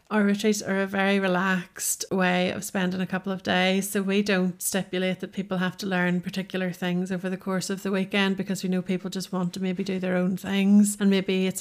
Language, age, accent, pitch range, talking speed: English, 30-49, Irish, 180-195 Hz, 235 wpm